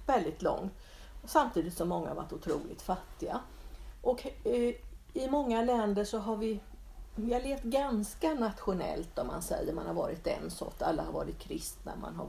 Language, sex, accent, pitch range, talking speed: Swedish, female, native, 200-245 Hz, 160 wpm